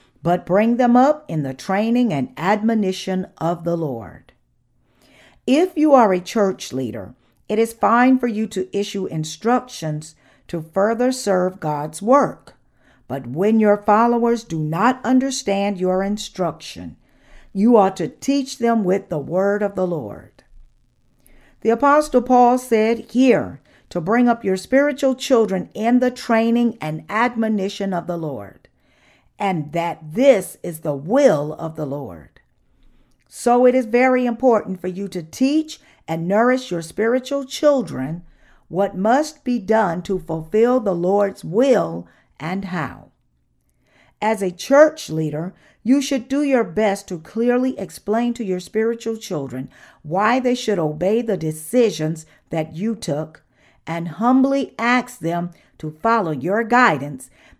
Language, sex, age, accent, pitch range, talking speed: English, female, 50-69, American, 160-240 Hz, 145 wpm